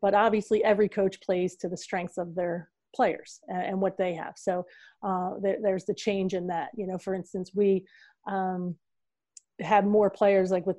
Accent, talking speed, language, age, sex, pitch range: American, 185 wpm, English, 30-49, female, 180-205 Hz